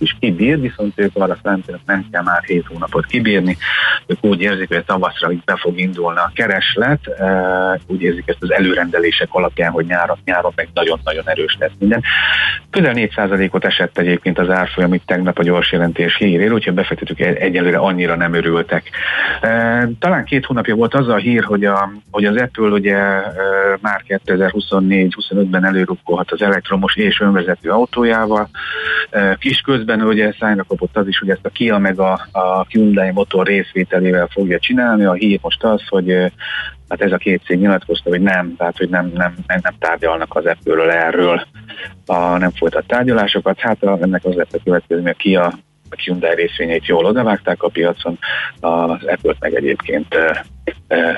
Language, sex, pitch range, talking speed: Hungarian, male, 90-105 Hz, 170 wpm